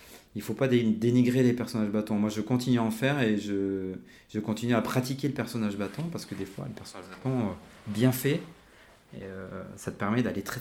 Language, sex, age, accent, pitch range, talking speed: French, male, 40-59, French, 95-115 Hz, 230 wpm